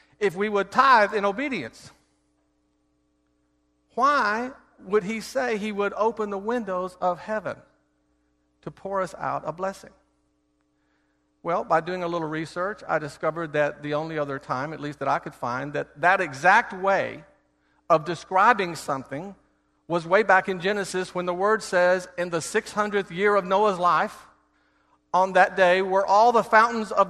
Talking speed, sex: 160 wpm, male